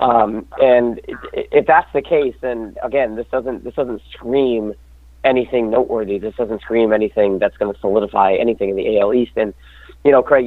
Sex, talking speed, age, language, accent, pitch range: male, 185 wpm, 40-59, English, American, 115-180 Hz